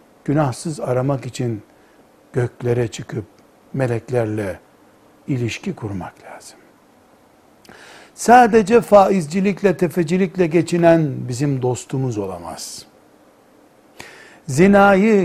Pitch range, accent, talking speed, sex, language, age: 125-175 Hz, native, 65 wpm, male, Turkish, 60-79